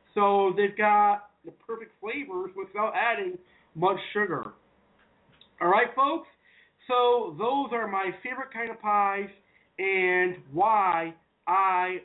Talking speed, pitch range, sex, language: 120 wpm, 185-245 Hz, male, English